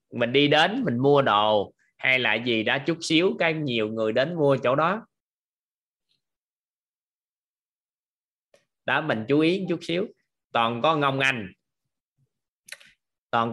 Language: Vietnamese